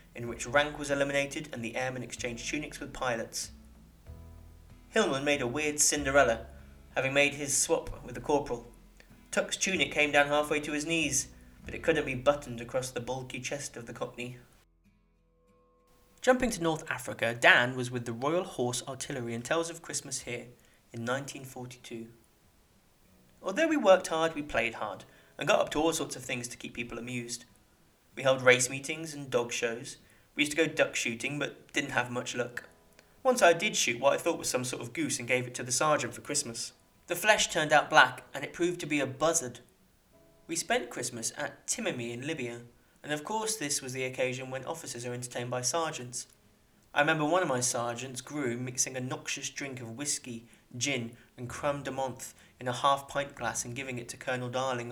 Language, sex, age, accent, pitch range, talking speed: English, male, 30-49, British, 120-145 Hz, 195 wpm